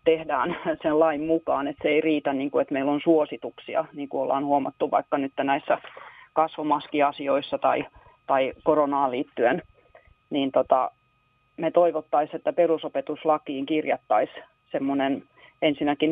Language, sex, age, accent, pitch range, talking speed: Finnish, female, 30-49, native, 140-155 Hz, 130 wpm